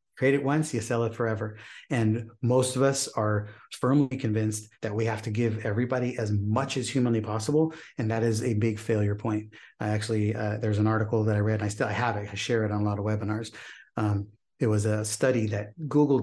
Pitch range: 110-125 Hz